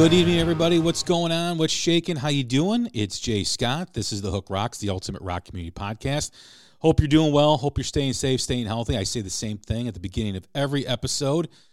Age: 40-59